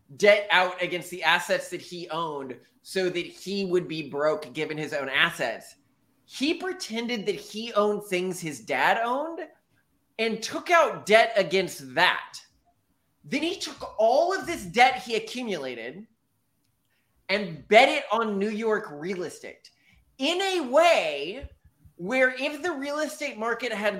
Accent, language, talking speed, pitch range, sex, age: American, English, 150 wpm, 160-245 Hz, male, 20-39